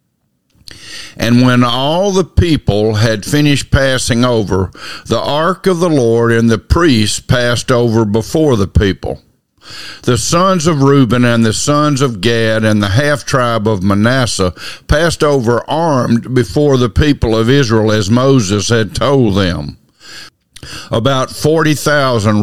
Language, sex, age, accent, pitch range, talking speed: English, male, 50-69, American, 110-140 Hz, 140 wpm